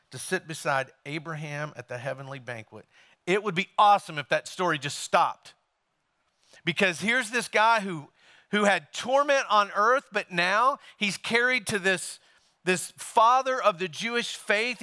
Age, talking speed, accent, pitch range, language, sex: 40-59, 160 wpm, American, 155-215 Hz, English, male